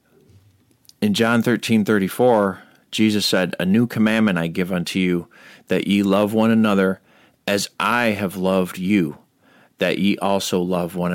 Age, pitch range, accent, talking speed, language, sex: 40-59, 95-115 Hz, American, 155 wpm, English, male